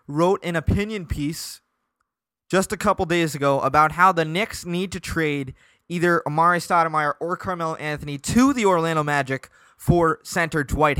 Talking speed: 160 wpm